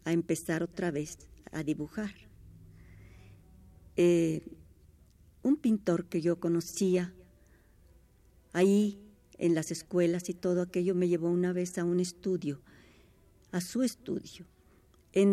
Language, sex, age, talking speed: Spanish, female, 50-69, 115 wpm